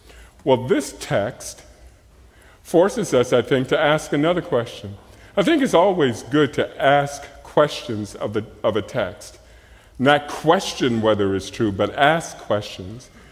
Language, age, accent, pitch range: English, 40-59, American, 105-145 Hz